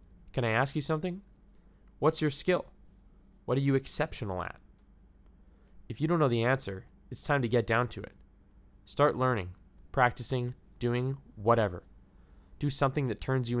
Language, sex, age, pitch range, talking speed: English, male, 20-39, 100-130 Hz, 160 wpm